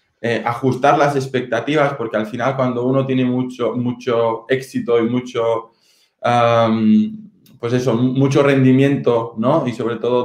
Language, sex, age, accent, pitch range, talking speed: Spanish, male, 20-39, Spanish, 115-135 Hz, 140 wpm